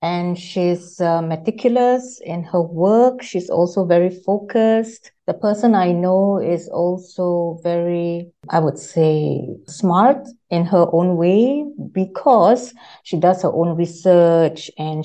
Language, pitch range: English, 160-200 Hz